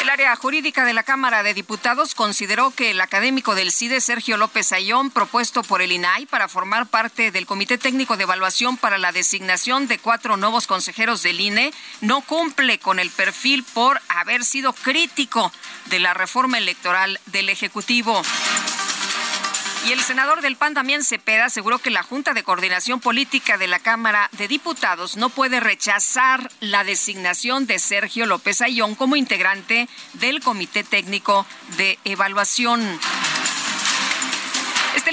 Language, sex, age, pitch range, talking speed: Spanish, female, 40-59, 200-260 Hz, 150 wpm